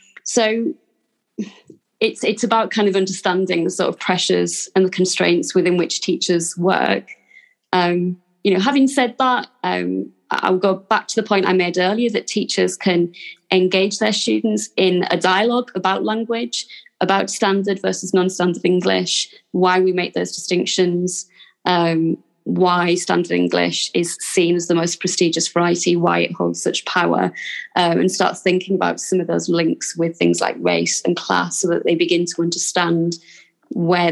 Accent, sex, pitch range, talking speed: British, female, 175-200 Hz, 165 wpm